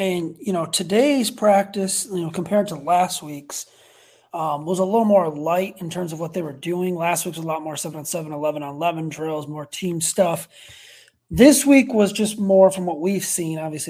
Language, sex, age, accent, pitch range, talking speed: English, male, 30-49, American, 145-180 Hz, 200 wpm